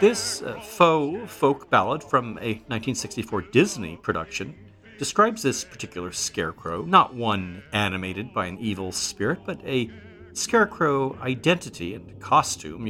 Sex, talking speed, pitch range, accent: male, 125 wpm, 95-125 Hz, American